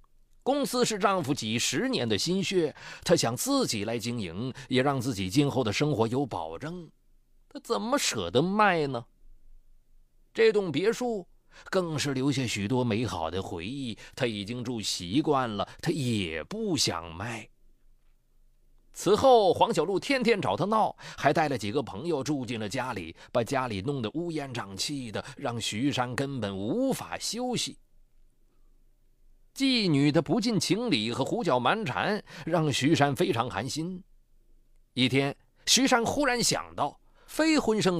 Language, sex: Chinese, male